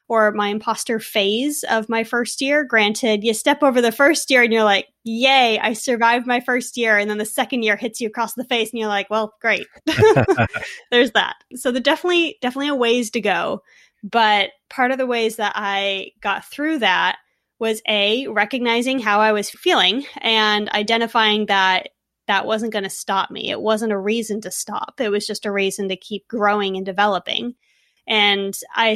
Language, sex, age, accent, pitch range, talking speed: English, female, 20-39, American, 205-250 Hz, 190 wpm